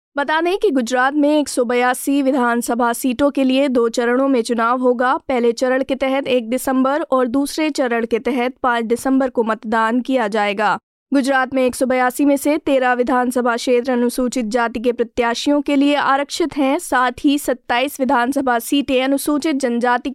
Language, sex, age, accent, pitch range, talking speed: Hindi, female, 20-39, native, 245-280 Hz, 165 wpm